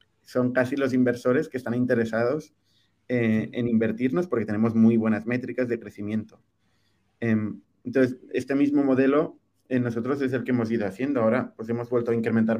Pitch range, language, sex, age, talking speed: 110-130 Hz, Spanish, male, 30-49, 170 wpm